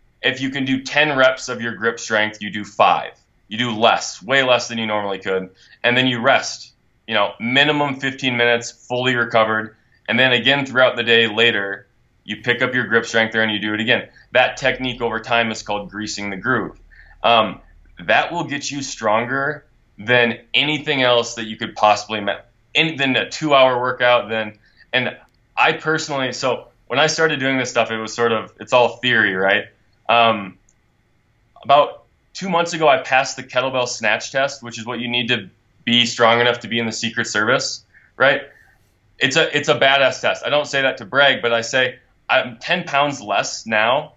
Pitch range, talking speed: 110-130 Hz, 195 wpm